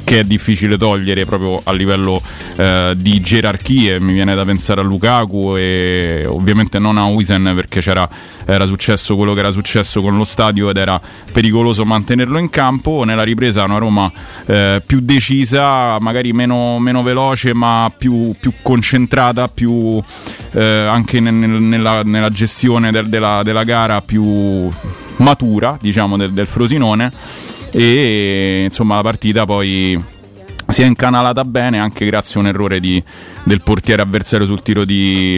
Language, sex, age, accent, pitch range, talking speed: Italian, male, 30-49, native, 95-115 Hz, 155 wpm